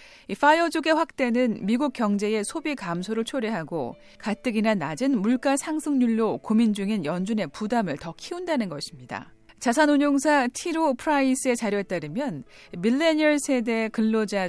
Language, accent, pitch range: Korean, native, 200-275 Hz